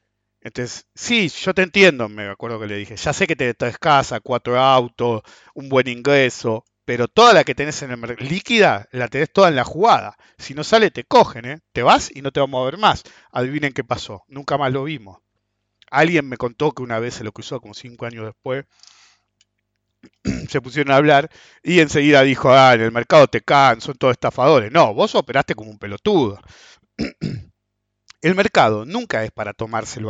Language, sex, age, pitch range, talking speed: English, male, 50-69, 115-155 Hz, 195 wpm